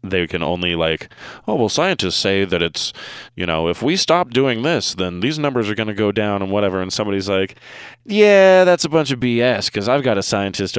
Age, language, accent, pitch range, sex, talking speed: 30-49, English, American, 85-110 Hz, male, 230 wpm